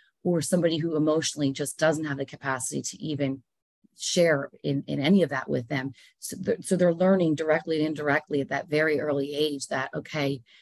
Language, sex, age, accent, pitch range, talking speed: English, female, 30-49, American, 140-170 Hz, 185 wpm